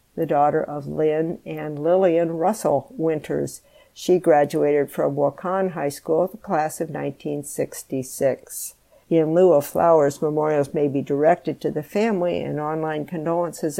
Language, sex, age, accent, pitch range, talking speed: English, female, 60-79, American, 150-180 Hz, 140 wpm